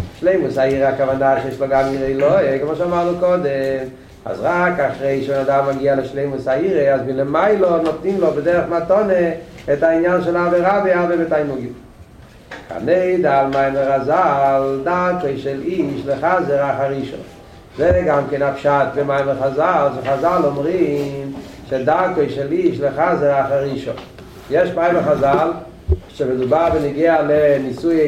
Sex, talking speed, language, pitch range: male, 125 wpm, Hebrew, 135-170 Hz